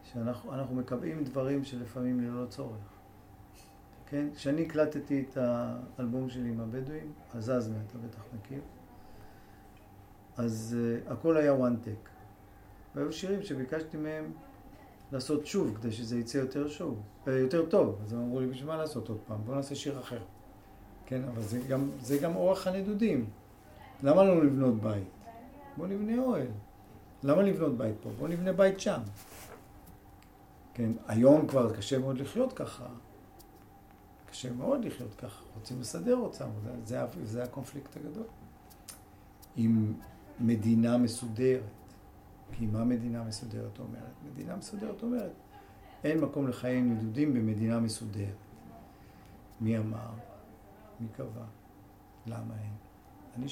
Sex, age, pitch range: male, 40-59, 105-140 Hz